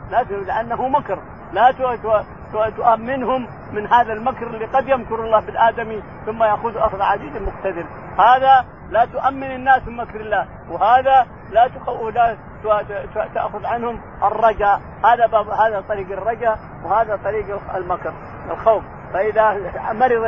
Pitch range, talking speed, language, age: 205-240 Hz, 110 wpm, Arabic, 50-69